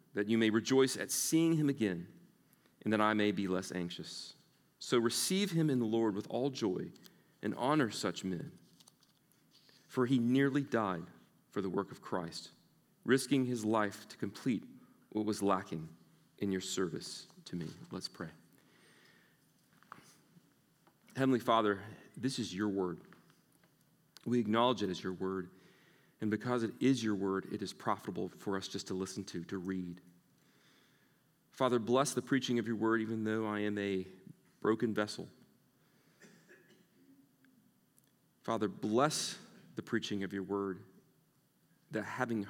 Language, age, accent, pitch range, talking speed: English, 40-59, American, 95-125 Hz, 145 wpm